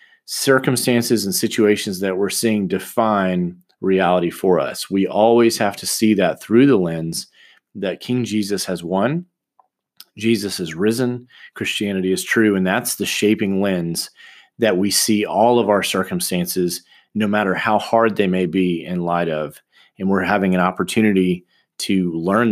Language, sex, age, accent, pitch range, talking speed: English, male, 30-49, American, 90-115 Hz, 155 wpm